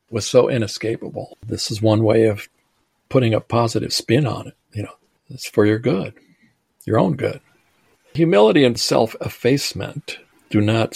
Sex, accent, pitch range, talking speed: male, American, 100-115 Hz, 160 wpm